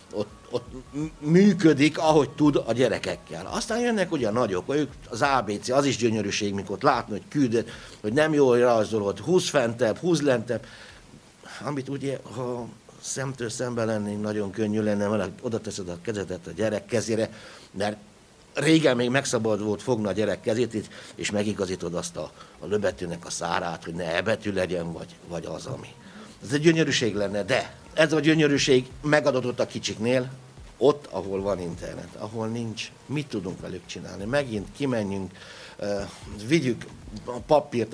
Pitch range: 100-135 Hz